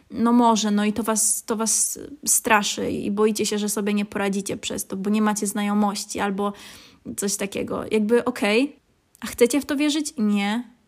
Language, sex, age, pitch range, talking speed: Polish, female, 20-39, 215-255 Hz, 175 wpm